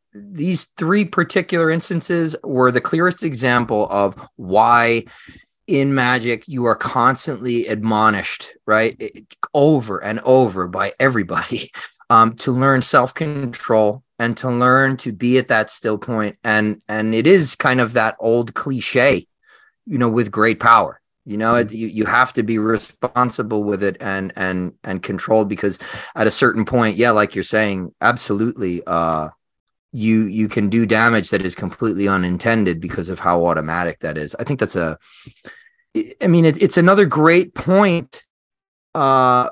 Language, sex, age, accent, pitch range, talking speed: English, male, 30-49, American, 105-150 Hz, 155 wpm